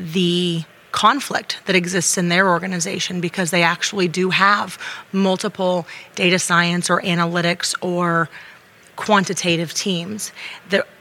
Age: 30-49